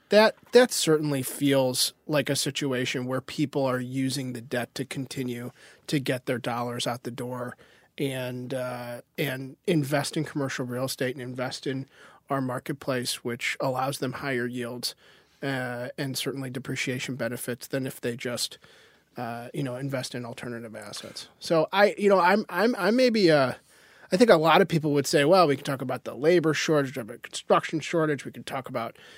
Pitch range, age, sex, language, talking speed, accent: 130-160 Hz, 30-49, male, English, 185 wpm, American